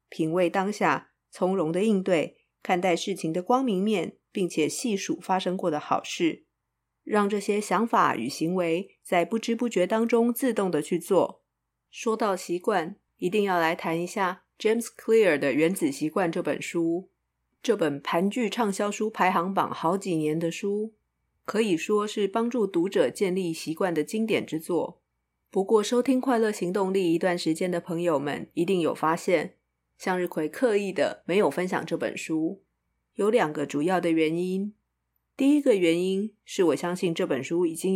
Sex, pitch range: female, 165-210 Hz